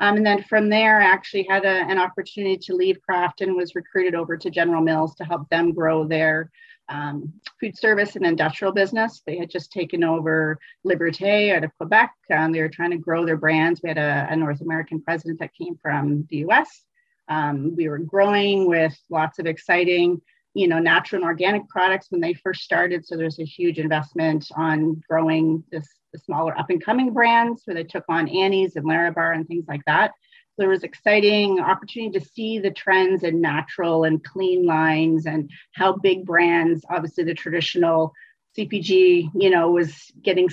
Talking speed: 190 wpm